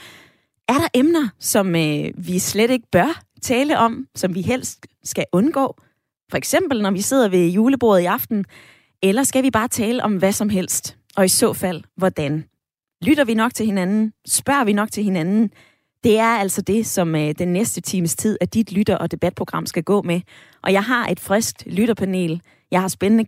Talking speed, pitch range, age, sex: 190 wpm, 170-220 Hz, 20-39, female